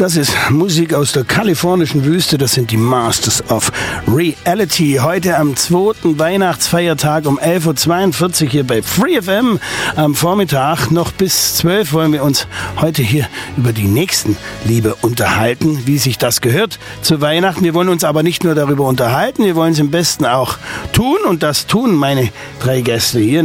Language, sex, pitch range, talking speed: German, male, 130-175 Hz, 170 wpm